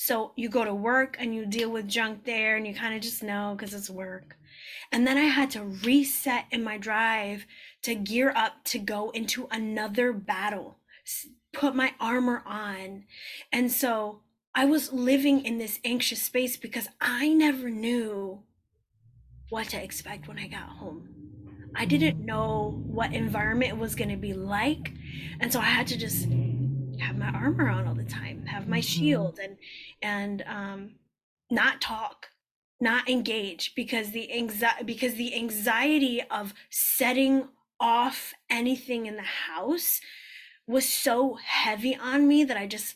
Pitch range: 205-260 Hz